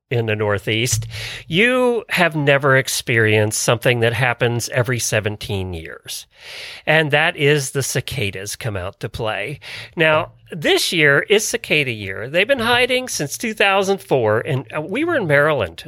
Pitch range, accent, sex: 125-195 Hz, American, male